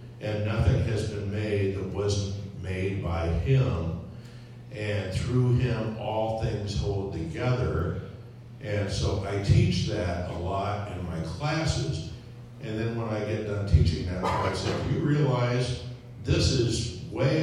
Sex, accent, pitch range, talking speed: male, American, 100-130 Hz, 150 wpm